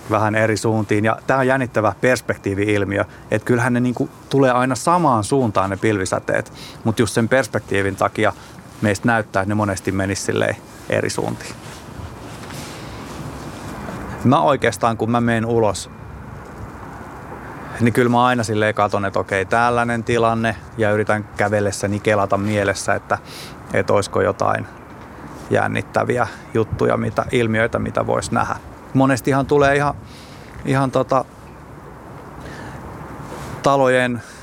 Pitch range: 105-120 Hz